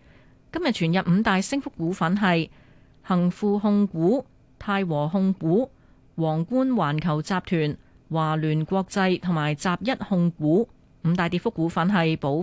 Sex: female